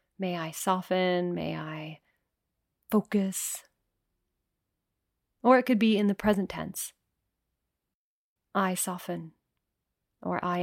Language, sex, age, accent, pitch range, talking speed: English, female, 30-49, American, 180-210 Hz, 100 wpm